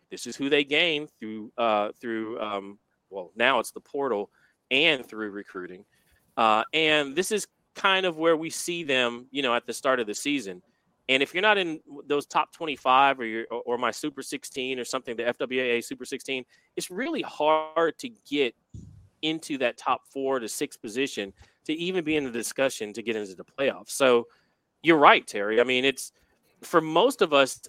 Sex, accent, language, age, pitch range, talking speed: male, American, English, 30-49, 120-155 Hz, 195 wpm